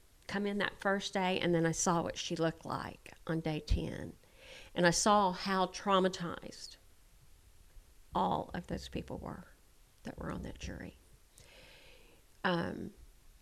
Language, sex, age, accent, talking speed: English, female, 50-69, American, 145 wpm